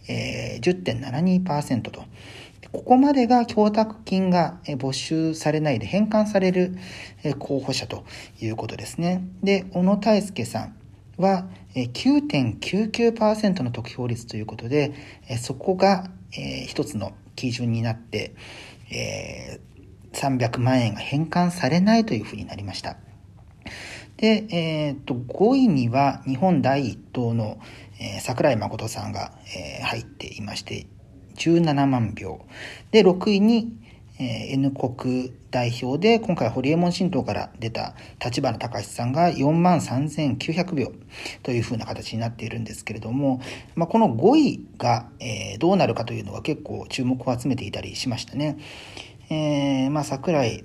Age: 40-59